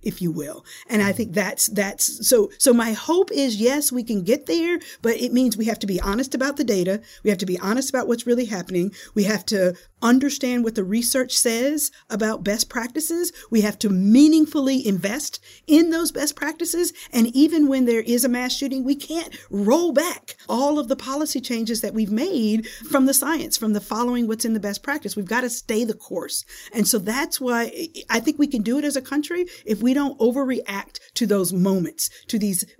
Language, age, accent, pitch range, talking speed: English, 50-69, American, 190-265 Hz, 215 wpm